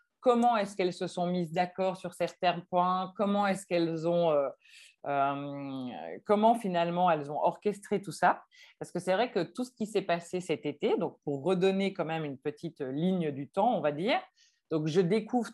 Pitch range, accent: 160-210 Hz, French